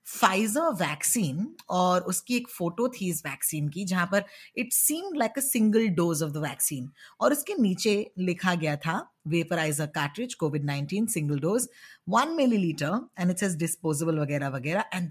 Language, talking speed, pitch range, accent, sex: Hindi, 65 wpm, 170-230 Hz, native, female